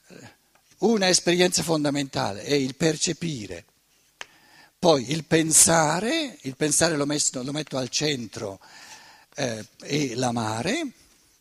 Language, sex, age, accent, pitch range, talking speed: Italian, male, 60-79, native, 145-210 Hz, 105 wpm